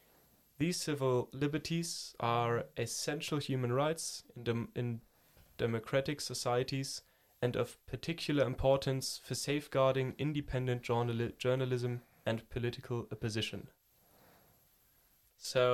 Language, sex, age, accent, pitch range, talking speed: German, male, 10-29, German, 115-130 Hz, 90 wpm